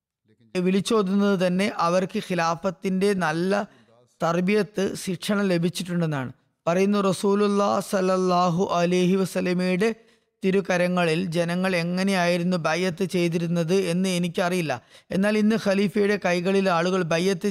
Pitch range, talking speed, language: 170-195 Hz, 90 wpm, Malayalam